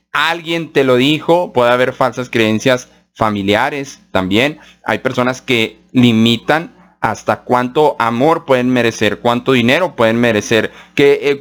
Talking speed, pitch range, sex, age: 125 wpm, 120-155 Hz, male, 30-49